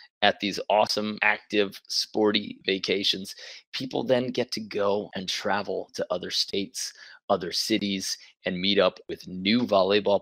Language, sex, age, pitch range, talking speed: English, male, 20-39, 95-115 Hz, 140 wpm